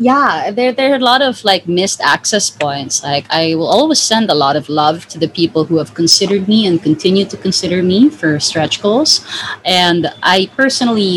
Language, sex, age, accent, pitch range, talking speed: English, female, 20-39, Filipino, 155-195 Hz, 205 wpm